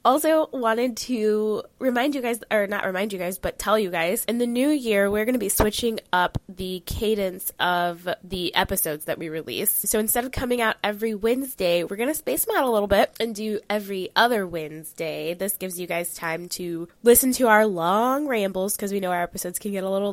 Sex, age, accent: female, 10-29, American